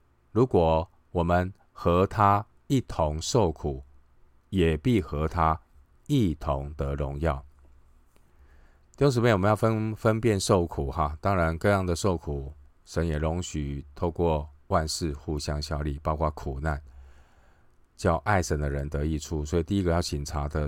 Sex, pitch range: male, 70-85 Hz